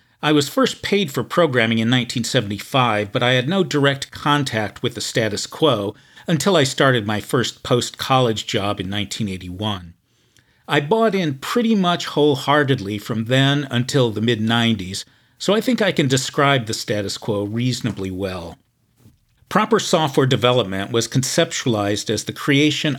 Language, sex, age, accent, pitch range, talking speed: English, male, 50-69, American, 110-140 Hz, 150 wpm